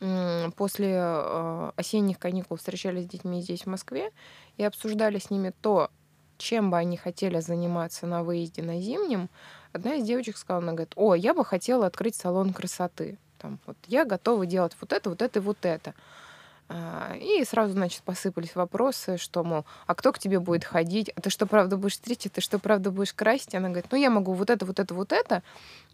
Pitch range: 180-220 Hz